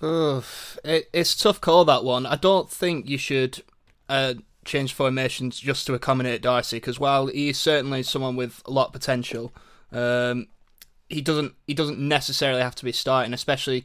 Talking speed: 175 wpm